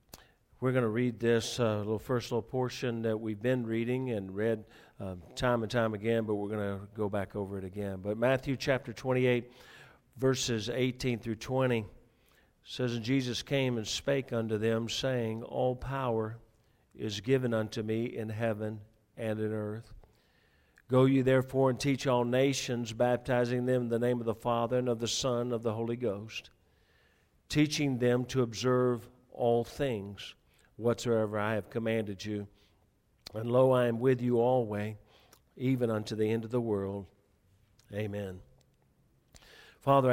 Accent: American